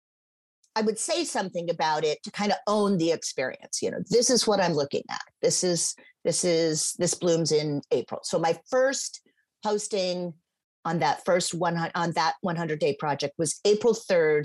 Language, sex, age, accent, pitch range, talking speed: English, female, 40-59, American, 160-215 Hz, 185 wpm